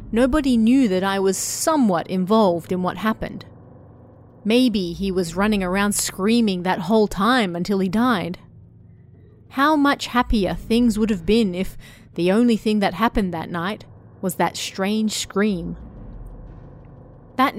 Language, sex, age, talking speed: English, female, 30-49, 145 wpm